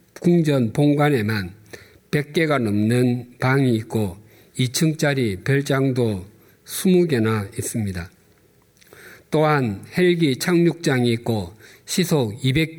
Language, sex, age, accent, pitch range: Korean, male, 50-69, native, 115-155 Hz